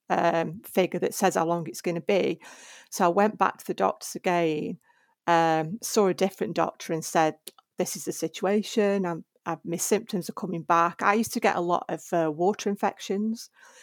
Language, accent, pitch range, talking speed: English, British, 170-200 Hz, 195 wpm